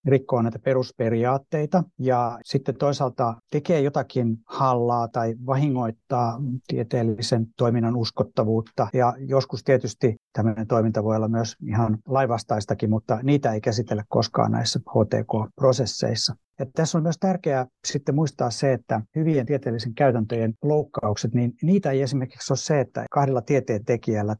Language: Finnish